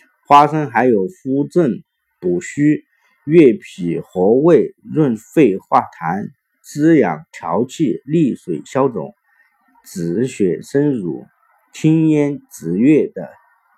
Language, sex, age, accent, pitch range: Chinese, male, 50-69, native, 135-175 Hz